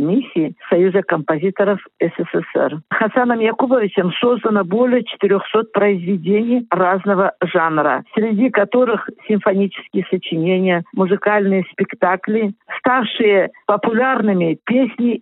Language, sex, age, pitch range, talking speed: Russian, female, 50-69, 185-225 Hz, 85 wpm